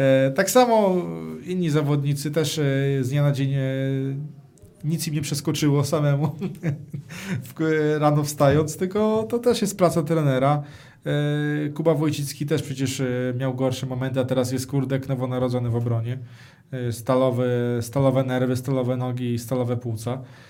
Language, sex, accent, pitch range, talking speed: Polish, male, native, 135-175 Hz, 150 wpm